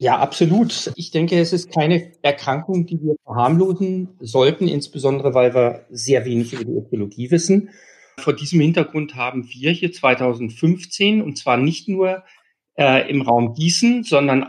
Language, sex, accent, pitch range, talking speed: German, male, German, 130-175 Hz, 155 wpm